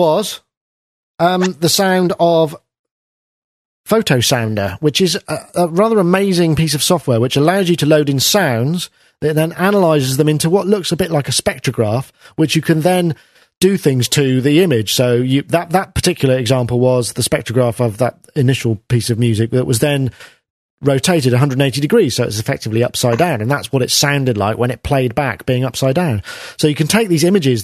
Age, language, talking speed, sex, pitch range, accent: 40-59, English, 190 wpm, male, 130-170 Hz, British